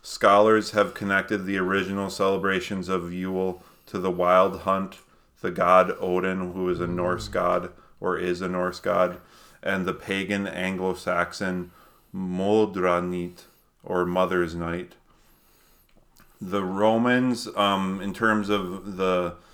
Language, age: English, 30-49